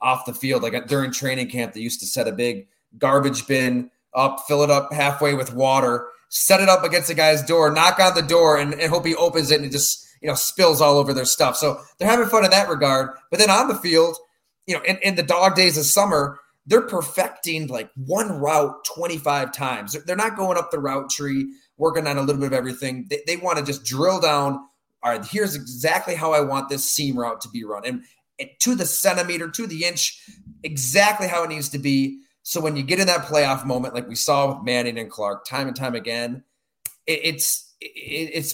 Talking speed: 220 wpm